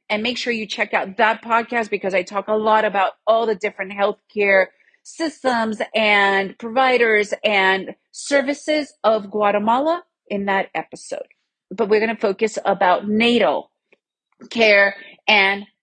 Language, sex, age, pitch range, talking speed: English, female, 40-59, 200-250 Hz, 135 wpm